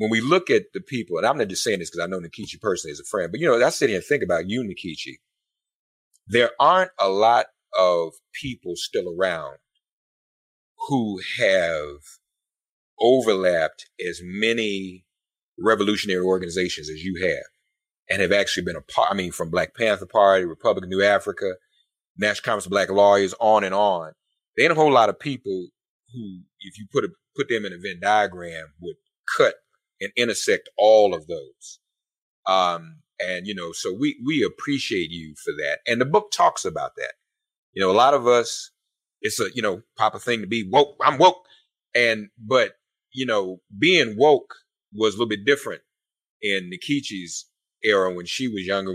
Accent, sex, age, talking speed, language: American, male, 30-49, 185 wpm, English